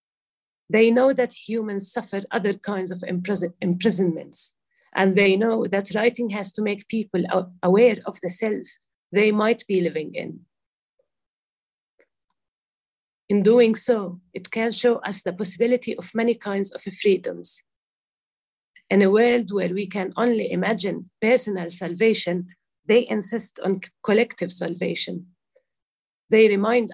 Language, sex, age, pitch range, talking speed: English, female, 40-59, 185-225 Hz, 130 wpm